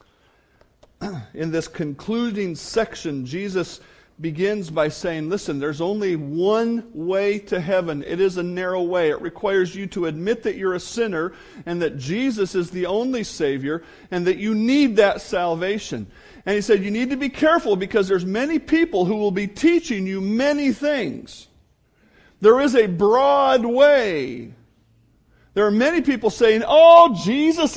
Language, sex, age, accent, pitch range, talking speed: English, male, 50-69, American, 170-235 Hz, 160 wpm